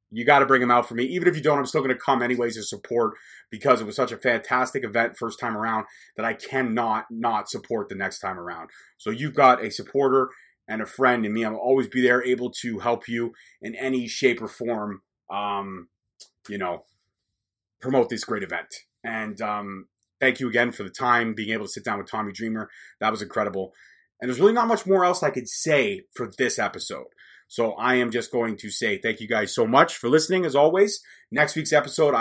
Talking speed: 225 wpm